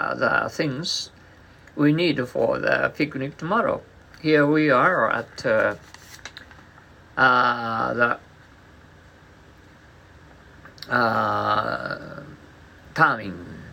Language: Japanese